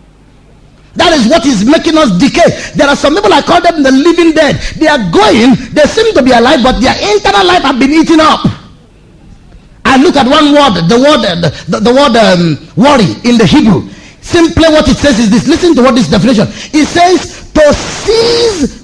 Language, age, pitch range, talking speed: English, 40-59, 235-335 Hz, 205 wpm